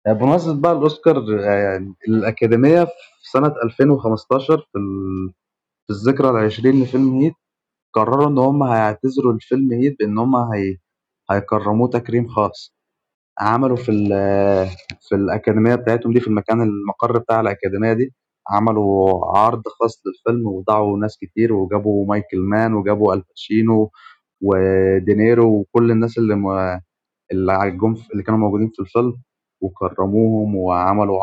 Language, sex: Arabic, male